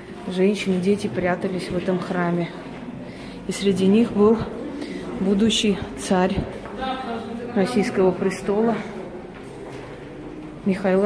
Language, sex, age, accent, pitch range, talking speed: Russian, female, 30-49, native, 175-200 Hz, 80 wpm